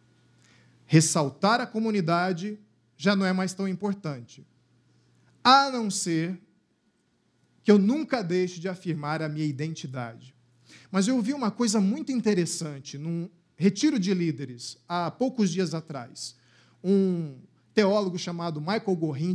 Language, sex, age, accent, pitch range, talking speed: Portuguese, male, 50-69, Brazilian, 145-210 Hz, 125 wpm